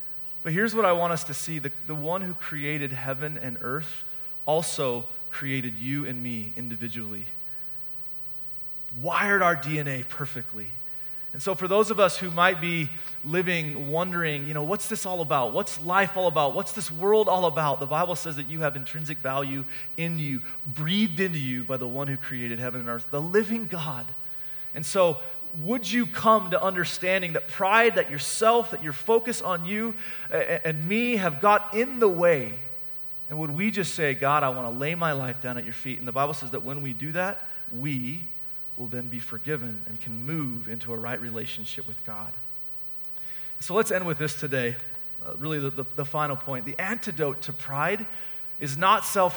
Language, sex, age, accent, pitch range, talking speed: English, male, 30-49, American, 130-180 Hz, 190 wpm